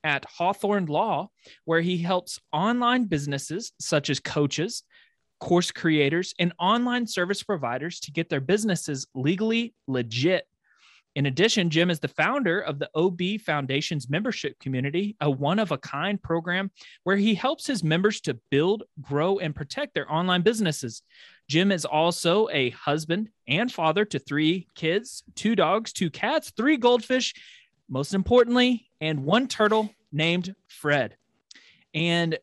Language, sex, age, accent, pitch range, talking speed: English, male, 30-49, American, 145-205 Hz, 140 wpm